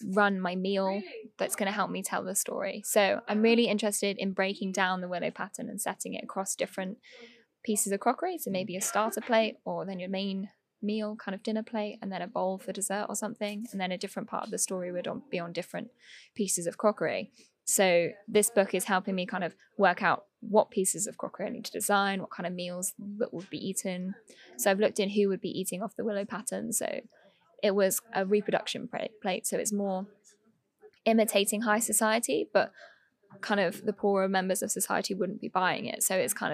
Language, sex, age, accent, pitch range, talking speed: English, female, 10-29, British, 190-225 Hz, 215 wpm